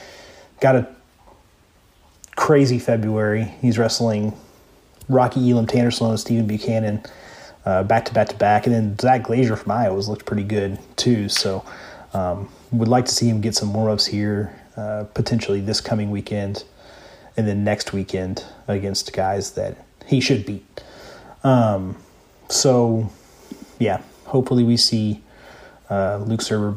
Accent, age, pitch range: American, 30-49, 105-125 Hz